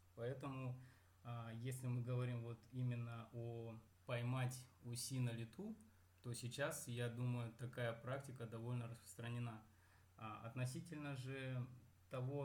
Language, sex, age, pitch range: Russian, male, 20-39, 115-125 Hz